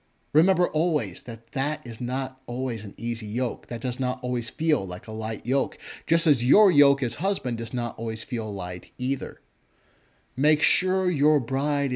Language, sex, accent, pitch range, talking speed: English, male, American, 120-145 Hz, 175 wpm